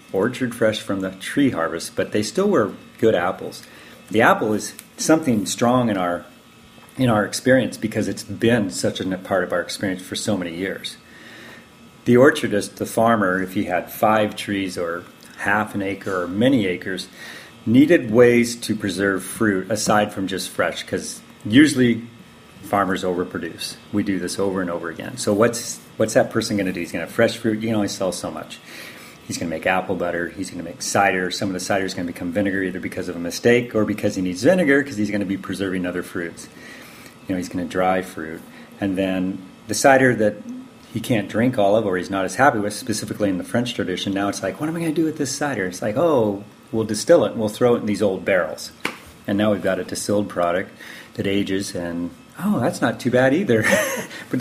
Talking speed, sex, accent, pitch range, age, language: 220 wpm, male, American, 95-115 Hz, 40-59, English